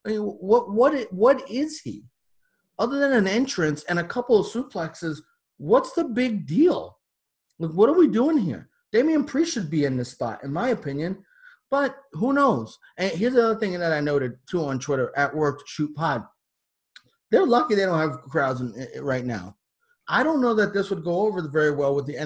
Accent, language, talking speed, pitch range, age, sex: American, English, 210 wpm, 135-210 Hz, 30-49, male